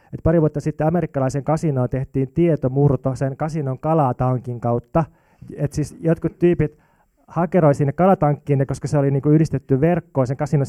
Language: Finnish